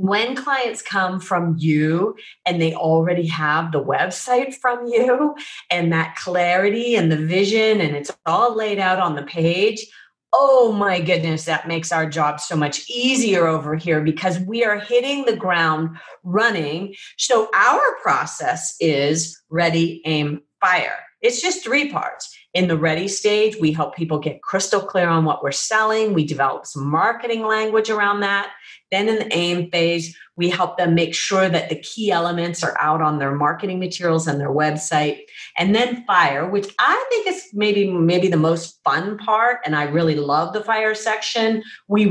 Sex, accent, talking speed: female, American, 175 wpm